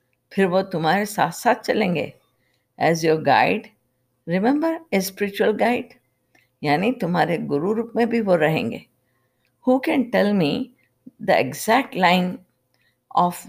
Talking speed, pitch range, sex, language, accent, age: 130 wpm, 150-195 Hz, female, Hindi, native, 50-69